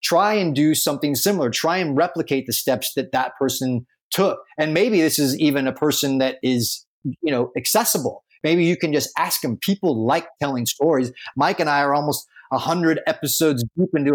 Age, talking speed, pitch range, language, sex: 30-49, 195 wpm, 130-165 Hz, English, male